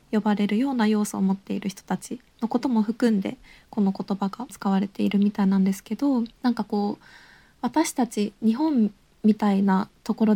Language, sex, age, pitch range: Japanese, female, 20-39, 205-255 Hz